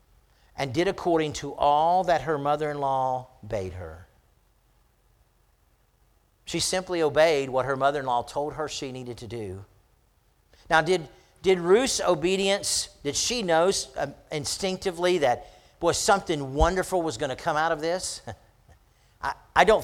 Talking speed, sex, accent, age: 135 wpm, male, American, 50-69